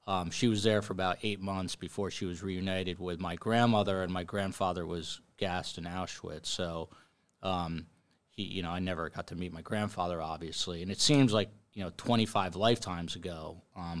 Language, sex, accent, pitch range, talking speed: English, male, American, 90-110 Hz, 195 wpm